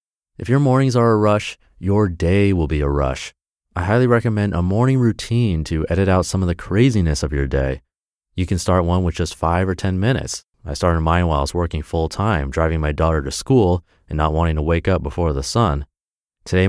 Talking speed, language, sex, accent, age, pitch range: 225 wpm, English, male, American, 30-49, 80-105 Hz